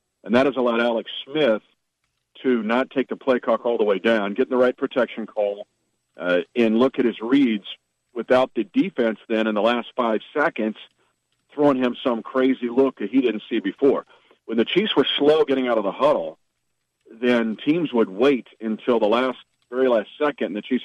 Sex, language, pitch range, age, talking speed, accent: male, English, 110-140 Hz, 50-69, 195 wpm, American